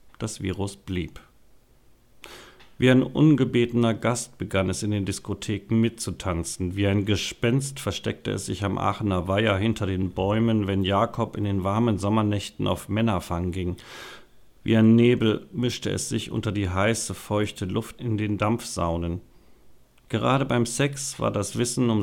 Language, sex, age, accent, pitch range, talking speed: German, male, 50-69, German, 95-115 Hz, 150 wpm